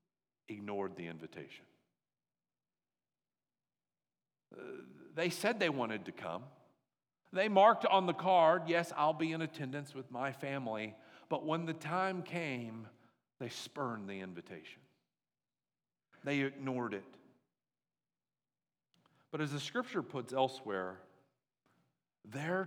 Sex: male